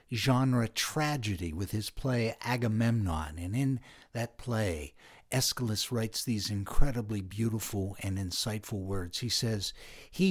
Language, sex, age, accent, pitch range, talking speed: English, male, 60-79, American, 105-135 Hz, 120 wpm